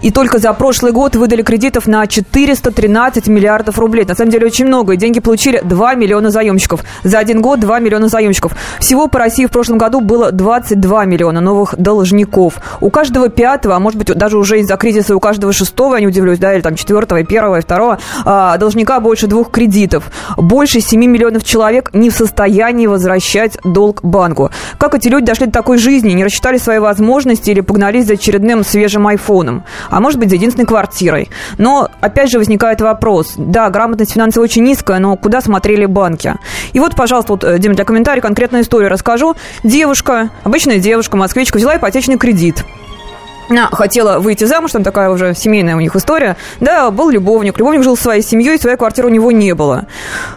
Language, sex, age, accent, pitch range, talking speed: Russian, female, 20-39, native, 200-240 Hz, 180 wpm